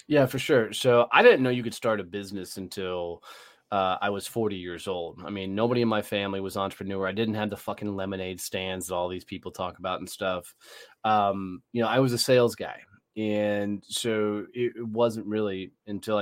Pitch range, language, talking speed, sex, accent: 95-110 Hz, English, 205 wpm, male, American